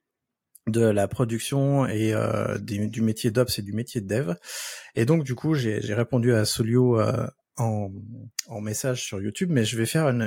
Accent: French